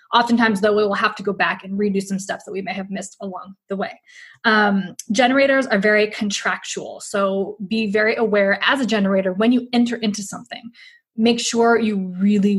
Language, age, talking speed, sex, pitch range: English, 20-39, 195 wpm, female, 195-230 Hz